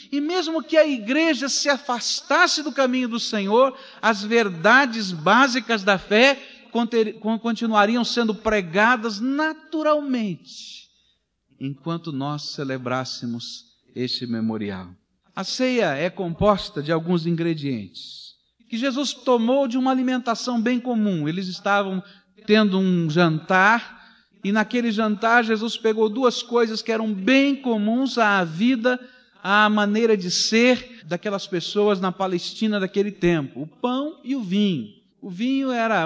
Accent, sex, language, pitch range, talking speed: Brazilian, male, Portuguese, 185-245 Hz, 125 wpm